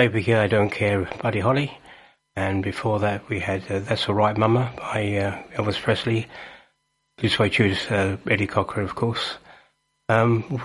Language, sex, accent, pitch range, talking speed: English, male, British, 105-125 Hz, 160 wpm